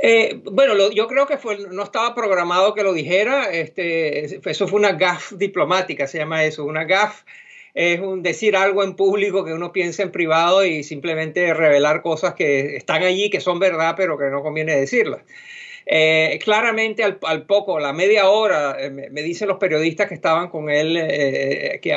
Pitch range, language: 155-205 Hz, Spanish